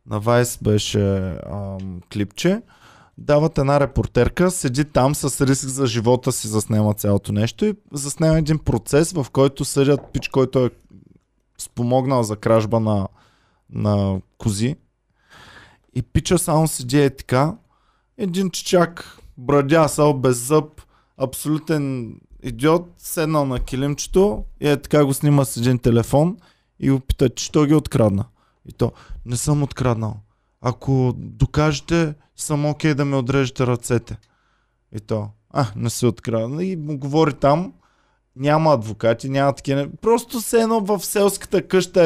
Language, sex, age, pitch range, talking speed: Bulgarian, male, 20-39, 115-155 Hz, 140 wpm